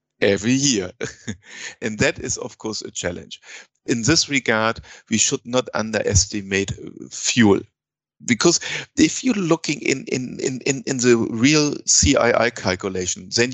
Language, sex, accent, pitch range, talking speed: English, male, German, 110-135 Hz, 135 wpm